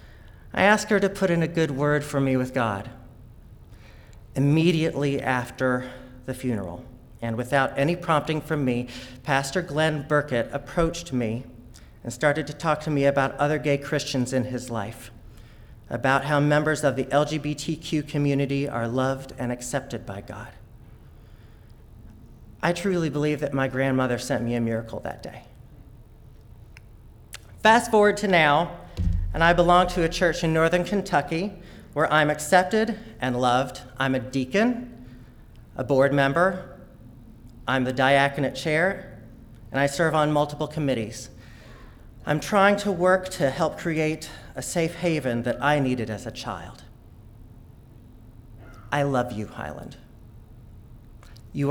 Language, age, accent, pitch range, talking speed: English, 40-59, American, 115-150 Hz, 140 wpm